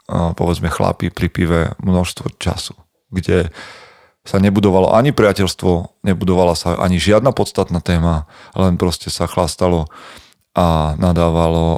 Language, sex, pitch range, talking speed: Slovak, male, 85-100 Hz, 115 wpm